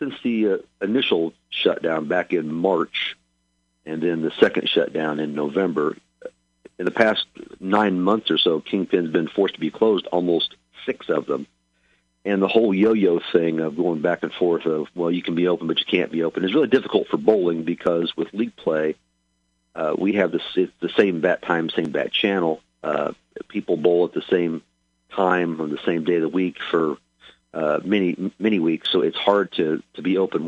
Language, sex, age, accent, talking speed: English, male, 50-69, American, 195 wpm